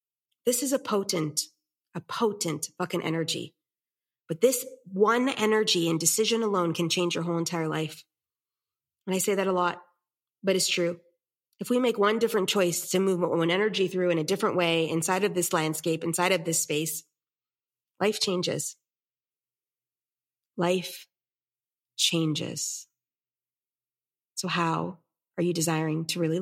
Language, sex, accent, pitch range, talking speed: English, female, American, 160-190 Hz, 145 wpm